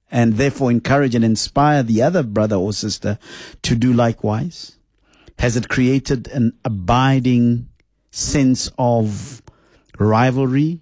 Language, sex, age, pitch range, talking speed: English, male, 50-69, 120-155 Hz, 115 wpm